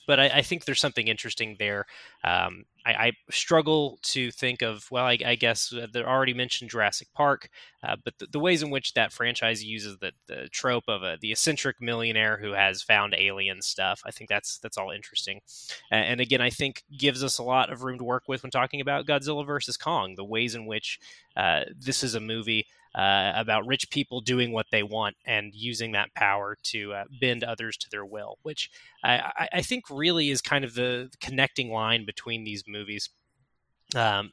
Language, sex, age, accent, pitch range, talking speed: English, male, 20-39, American, 110-140 Hz, 205 wpm